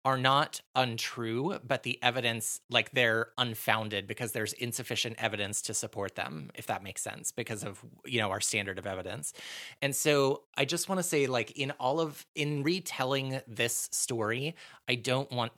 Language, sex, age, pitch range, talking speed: English, male, 30-49, 110-130 Hz, 175 wpm